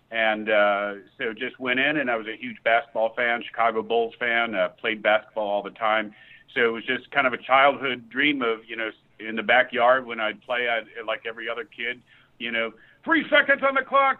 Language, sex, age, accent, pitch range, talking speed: English, male, 50-69, American, 105-130 Hz, 220 wpm